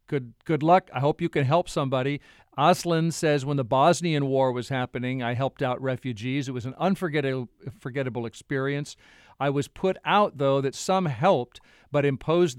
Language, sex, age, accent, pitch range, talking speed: English, male, 50-69, American, 130-155 Hz, 175 wpm